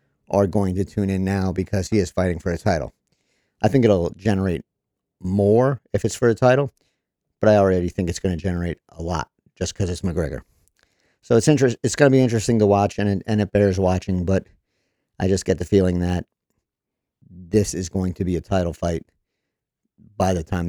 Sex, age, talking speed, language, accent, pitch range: male, 50-69, 205 wpm, English, American, 90-105 Hz